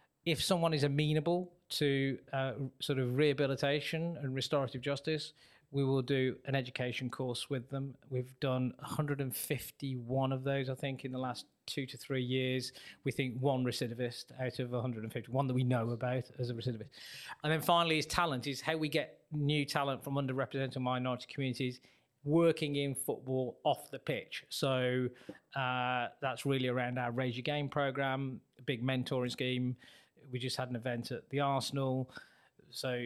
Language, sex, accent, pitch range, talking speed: English, male, British, 125-140 Hz, 170 wpm